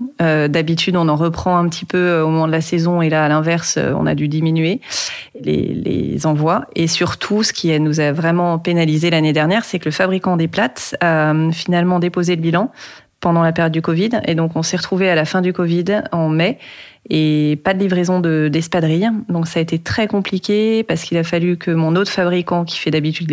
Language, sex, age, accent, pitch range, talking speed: French, female, 30-49, French, 160-190 Hz, 220 wpm